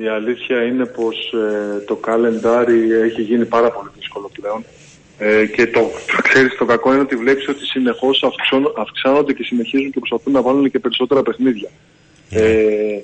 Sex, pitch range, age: male, 115-135 Hz, 20-39